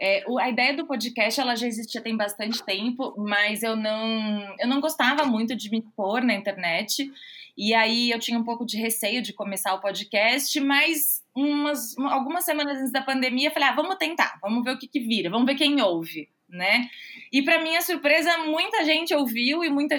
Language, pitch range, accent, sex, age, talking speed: Portuguese, 230-300 Hz, Brazilian, female, 20-39, 200 wpm